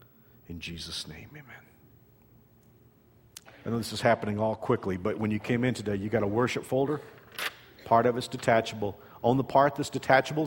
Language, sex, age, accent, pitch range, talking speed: English, male, 50-69, American, 115-145 Hz, 180 wpm